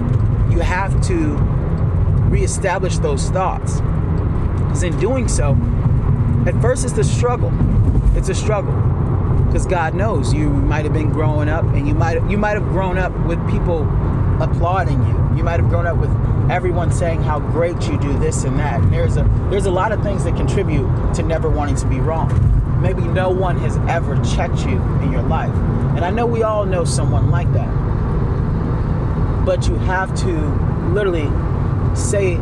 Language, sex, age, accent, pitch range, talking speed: English, male, 30-49, American, 110-125 Hz, 170 wpm